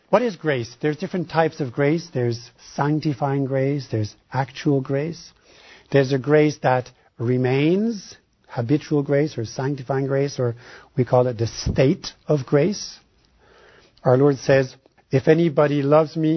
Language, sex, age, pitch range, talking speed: English, male, 60-79, 130-155 Hz, 145 wpm